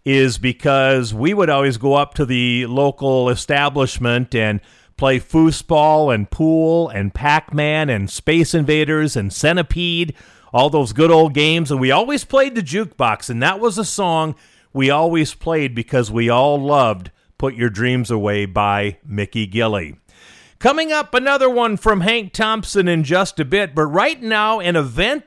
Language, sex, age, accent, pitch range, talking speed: English, male, 40-59, American, 130-190 Hz, 165 wpm